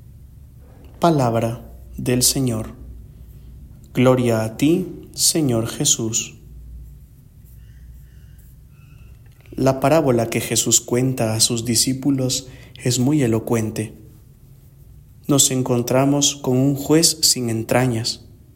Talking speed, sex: 85 wpm, male